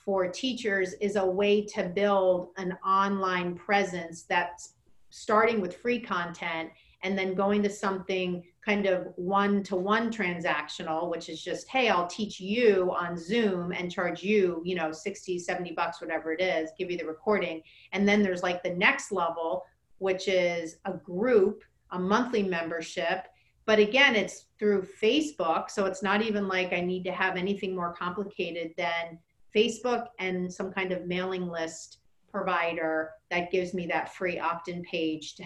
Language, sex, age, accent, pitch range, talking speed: English, female, 40-59, American, 175-210 Hz, 160 wpm